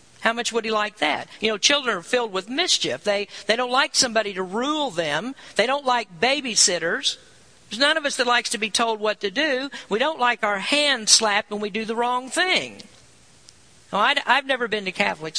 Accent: American